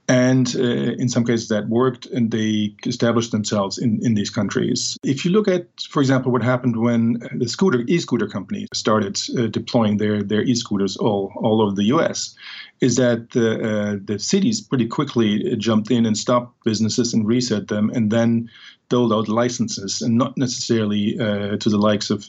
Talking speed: 185 wpm